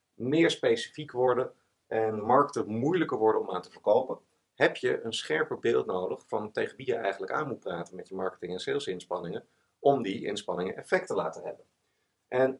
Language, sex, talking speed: Dutch, male, 185 wpm